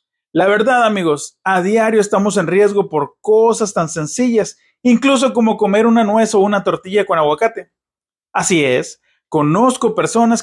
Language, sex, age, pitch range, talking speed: Spanish, male, 30-49, 180-235 Hz, 150 wpm